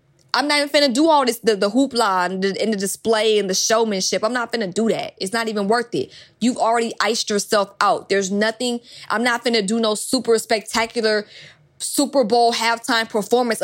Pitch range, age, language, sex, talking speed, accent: 200-240 Hz, 20-39, English, female, 200 wpm, American